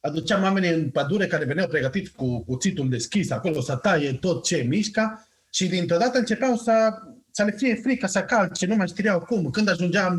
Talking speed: 195 wpm